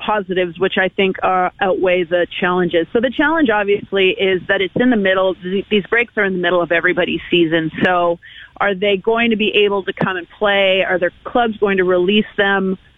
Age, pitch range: 30-49, 180-220 Hz